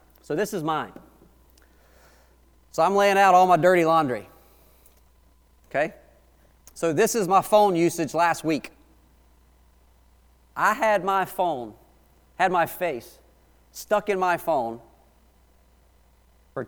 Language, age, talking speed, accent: English, 40-59, 120 wpm, American